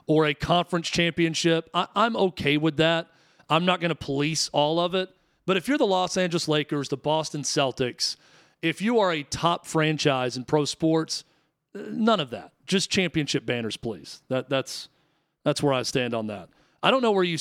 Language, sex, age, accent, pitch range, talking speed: English, male, 40-59, American, 145-180 Hz, 195 wpm